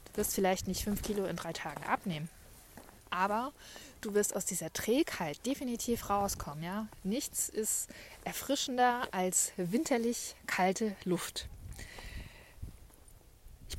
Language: German